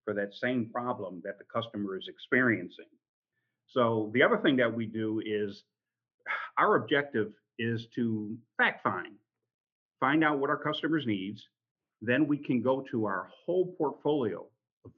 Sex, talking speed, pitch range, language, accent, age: male, 150 wpm, 105-145 Hz, English, American, 50-69